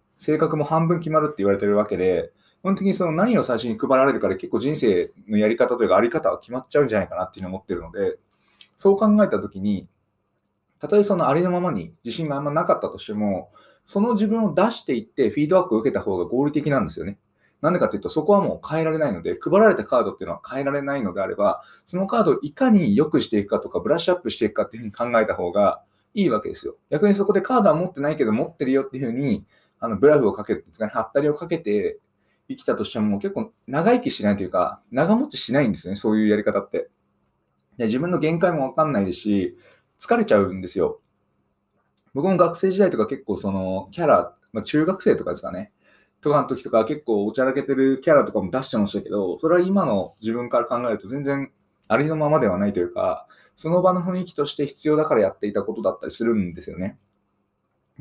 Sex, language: male, Japanese